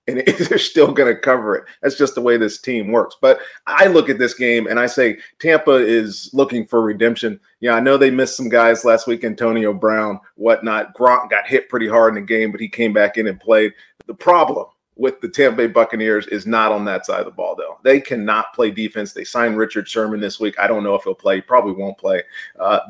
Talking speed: 240 wpm